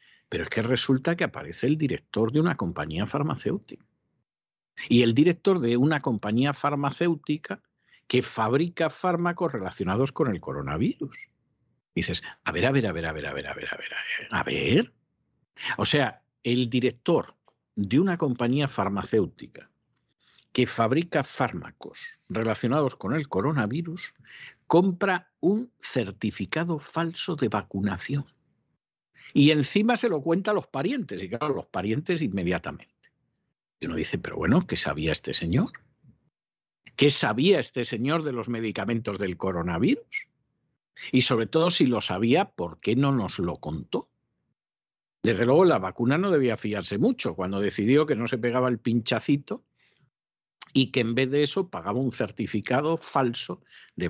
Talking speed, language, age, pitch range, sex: 150 wpm, Spanish, 60-79, 115-160 Hz, male